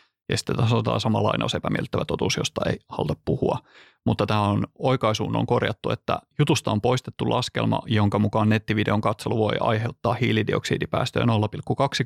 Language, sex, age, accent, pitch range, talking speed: Finnish, male, 30-49, native, 105-120 Hz, 145 wpm